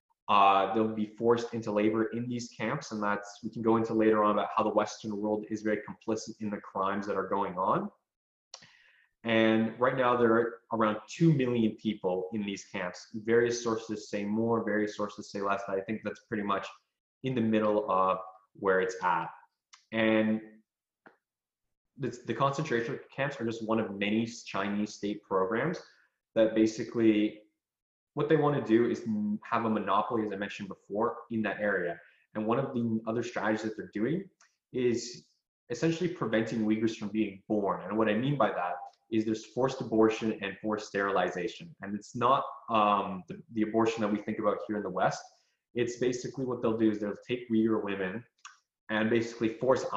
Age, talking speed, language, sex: 20-39, 185 wpm, English, male